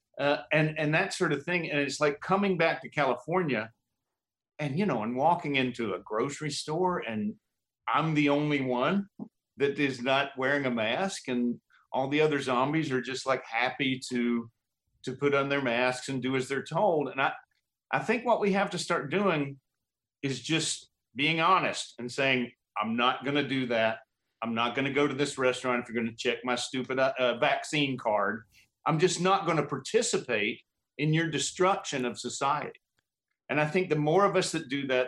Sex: male